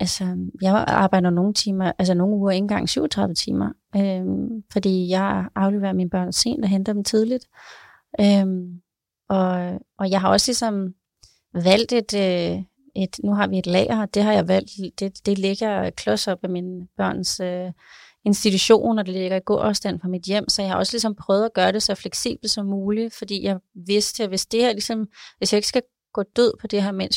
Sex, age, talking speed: female, 30-49, 205 wpm